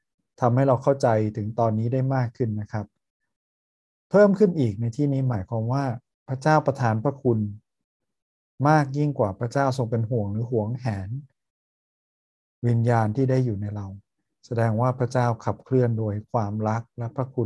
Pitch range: 110-135 Hz